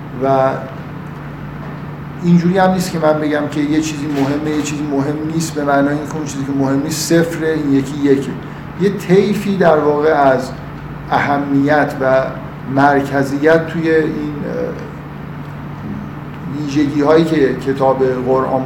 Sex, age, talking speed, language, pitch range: male, 50-69, 135 wpm, Persian, 135-160 Hz